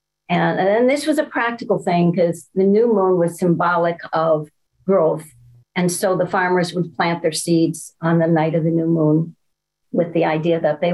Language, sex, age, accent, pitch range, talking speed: English, female, 50-69, American, 165-205 Hz, 190 wpm